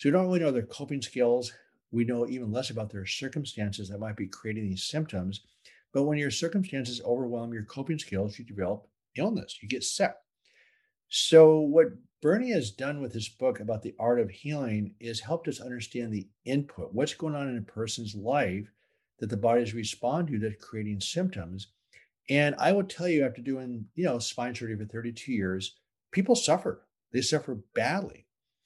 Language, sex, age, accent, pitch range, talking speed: English, male, 50-69, American, 110-145 Hz, 185 wpm